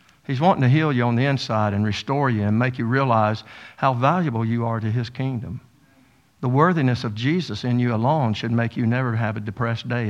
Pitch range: 120-145 Hz